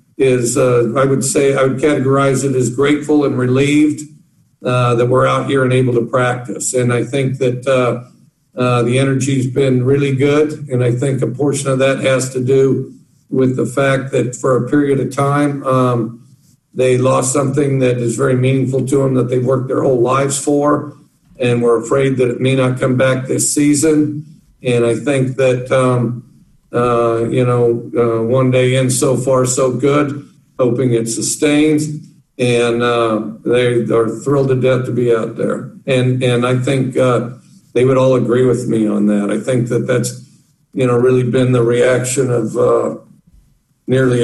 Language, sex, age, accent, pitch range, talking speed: English, male, 50-69, American, 120-135 Hz, 185 wpm